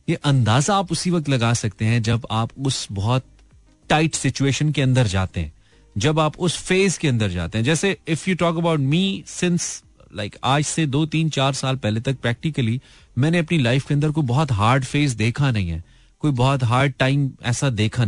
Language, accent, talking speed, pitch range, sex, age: Hindi, native, 200 wpm, 115-160 Hz, male, 30-49